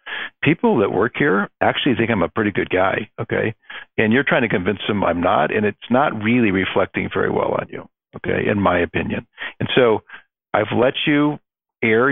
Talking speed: 195 wpm